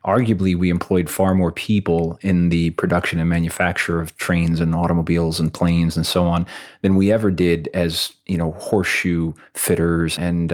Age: 30-49